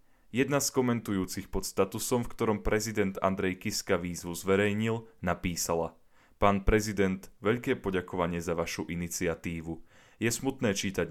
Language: Slovak